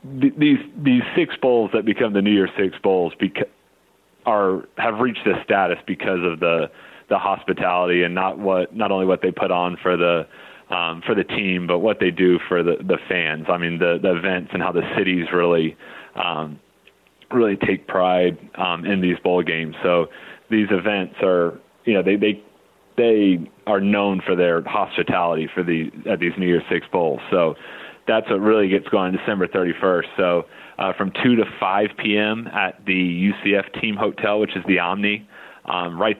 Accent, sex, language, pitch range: American, male, English, 90-100 Hz